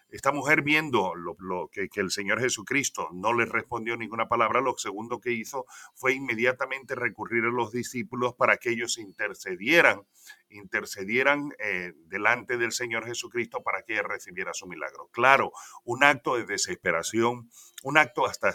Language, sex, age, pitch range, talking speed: Spanish, male, 40-59, 115-145 Hz, 160 wpm